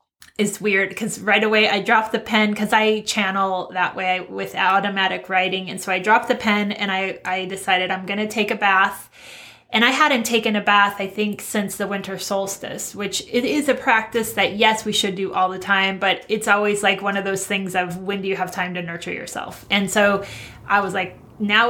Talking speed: 225 wpm